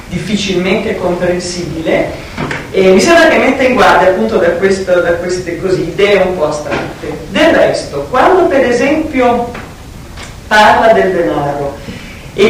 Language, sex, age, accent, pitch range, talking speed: Italian, female, 40-59, native, 185-245 Hz, 135 wpm